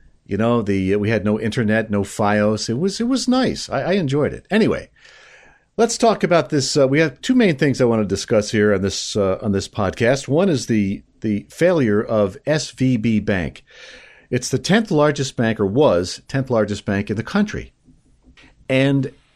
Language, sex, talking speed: English, male, 195 wpm